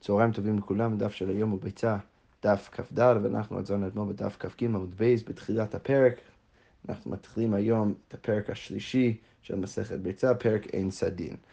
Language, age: Hebrew, 30-49